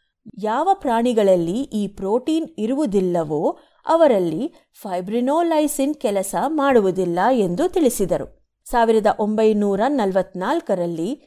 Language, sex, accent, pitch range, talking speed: Kannada, female, native, 205-290 Hz, 70 wpm